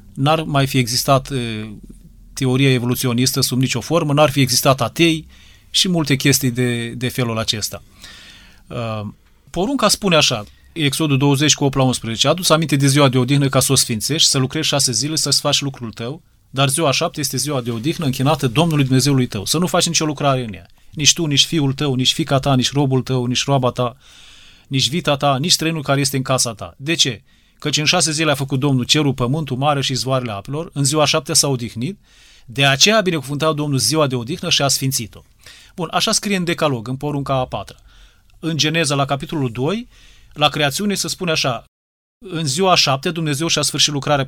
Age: 30-49